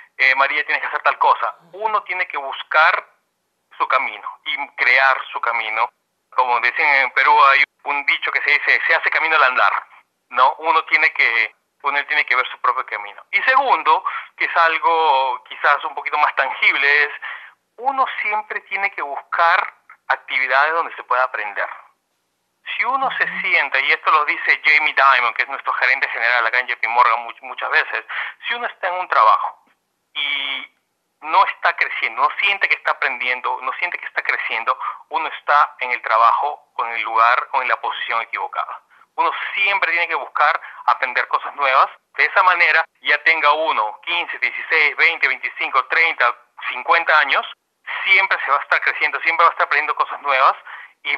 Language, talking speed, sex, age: English, 180 wpm, male, 40-59